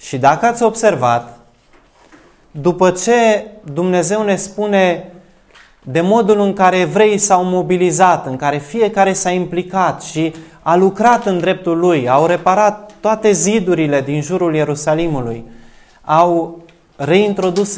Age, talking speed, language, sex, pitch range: 20-39, 120 wpm, Romanian, male, 160-225 Hz